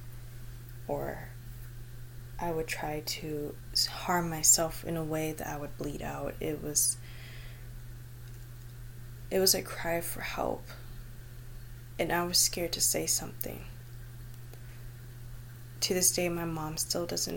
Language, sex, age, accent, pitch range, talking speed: English, female, 20-39, American, 120-160 Hz, 130 wpm